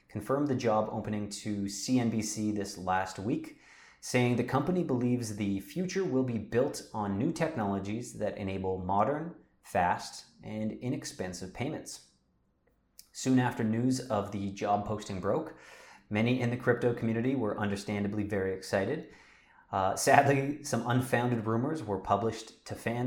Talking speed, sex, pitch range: 140 wpm, male, 100-125 Hz